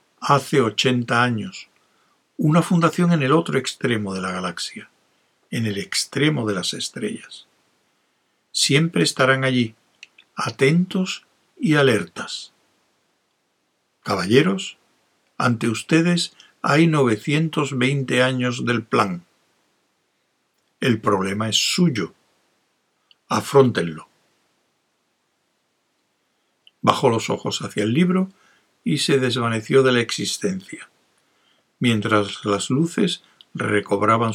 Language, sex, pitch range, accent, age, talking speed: Spanish, male, 105-150 Hz, Spanish, 60-79, 95 wpm